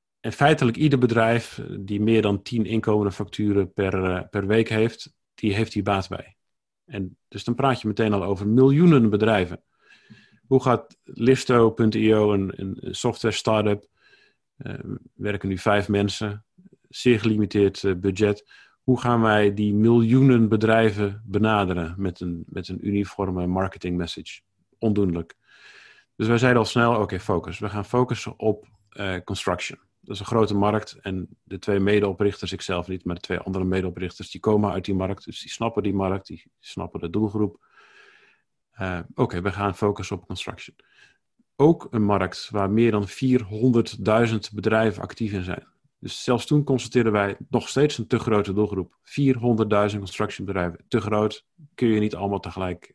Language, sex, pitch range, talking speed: Dutch, male, 95-115 Hz, 160 wpm